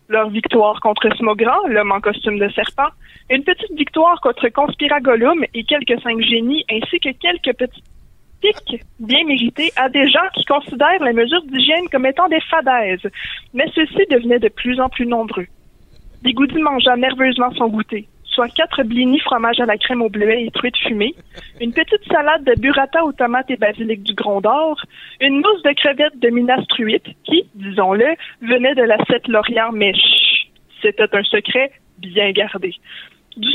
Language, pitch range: French, 225-290 Hz